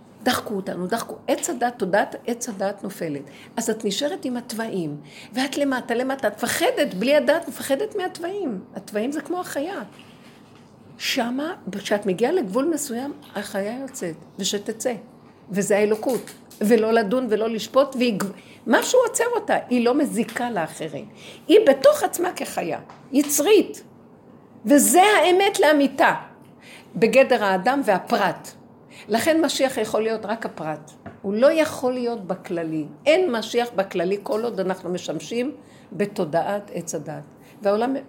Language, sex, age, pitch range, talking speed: Hebrew, female, 50-69, 195-265 Hz, 125 wpm